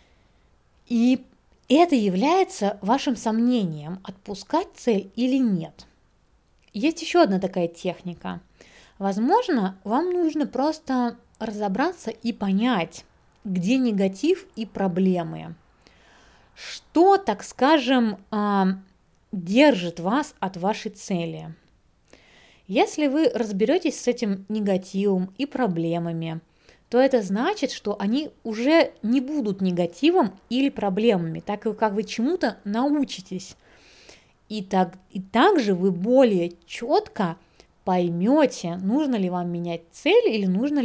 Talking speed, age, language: 105 wpm, 20-39, Russian